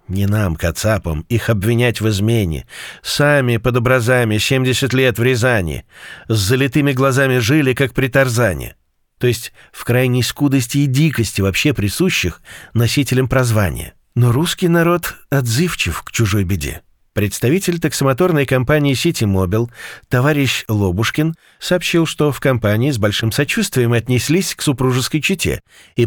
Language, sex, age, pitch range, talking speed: Russian, male, 50-69, 105-140 Hz, 135 wpm